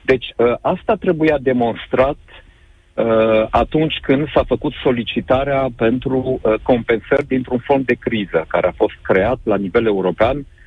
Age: 50-69